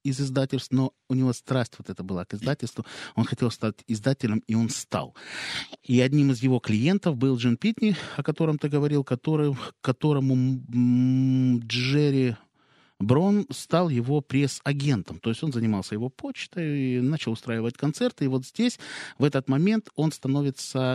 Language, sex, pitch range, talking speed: Russian, male, 105-135 Hz, 160 wpm